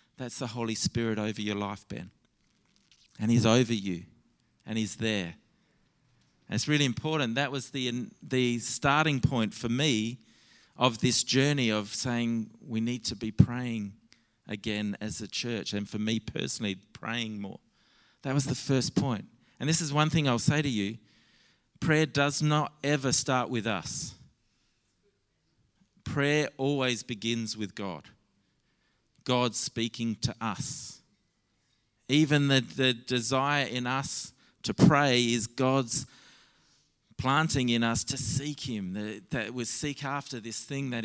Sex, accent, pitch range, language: male, Australian, 110-140 Hz, English